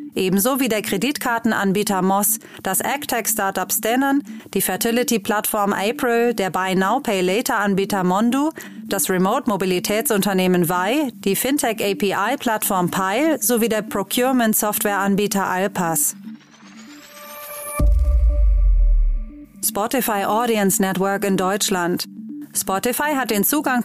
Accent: German